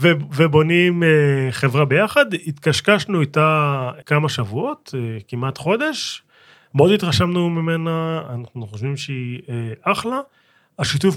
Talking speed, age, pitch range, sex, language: 90 wpm, 30-49, 125-165 Hz, male, Hebrew